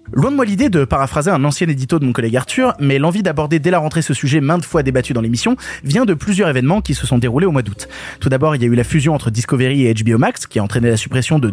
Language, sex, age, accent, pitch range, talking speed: French, male, 20-39, French, 125-185 Hz, 290 wpm